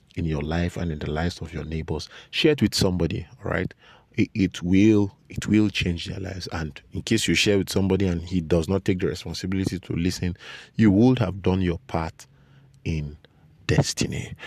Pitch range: 95-140 Hz